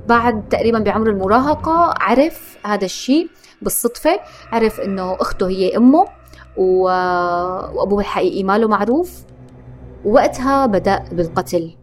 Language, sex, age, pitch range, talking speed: Arabic, female, 20-39, 180-235 Hz, 105 wpm